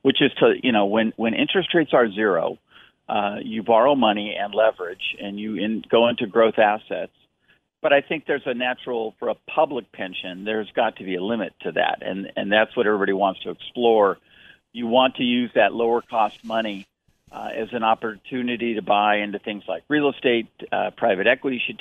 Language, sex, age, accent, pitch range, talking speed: English, male, 50-69, American, 105-125 Hz, 200 wpm